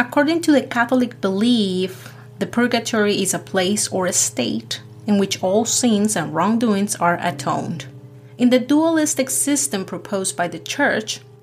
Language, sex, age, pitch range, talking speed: English, female, 30-49, 160-230 Hz, 150 wpm